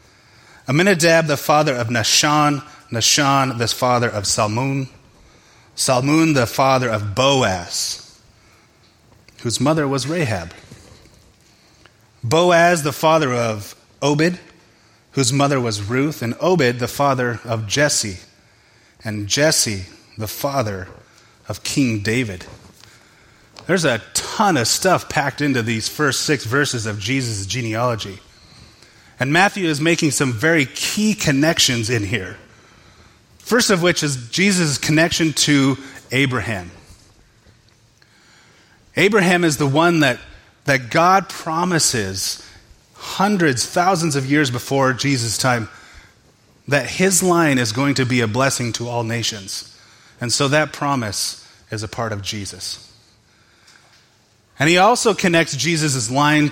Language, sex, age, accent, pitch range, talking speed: English, male, 30-49, American, 110-150 Hz, 120 wpm